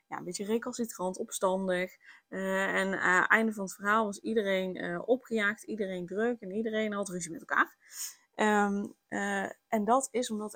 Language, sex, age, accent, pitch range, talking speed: Dutch, female, 20-39, Dutch, 185-225 Hz, 180 wpm